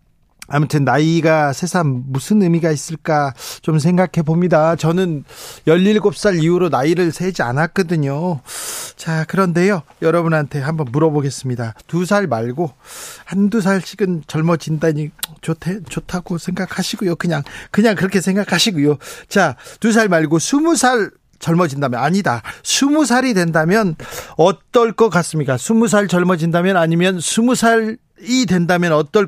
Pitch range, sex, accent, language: 150-195 Hz, male, native, Korean